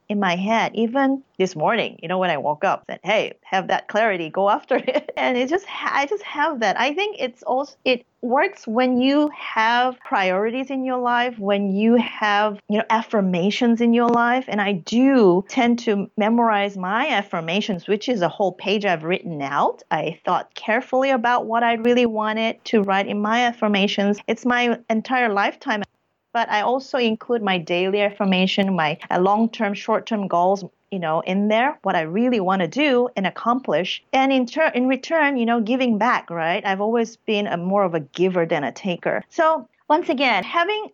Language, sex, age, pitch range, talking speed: English, female, 30-49, 190-245 Hz, 190 wpm